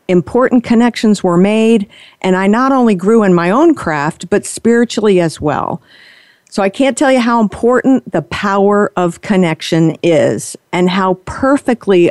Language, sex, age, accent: English, female, 50-69, American